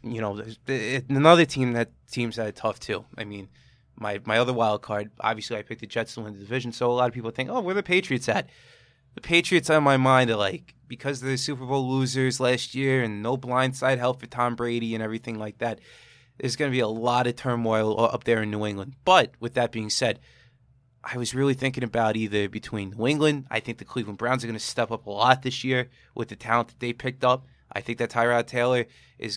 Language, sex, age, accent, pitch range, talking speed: English, male, 20-39, American, 115-130 Hz, 240 wpm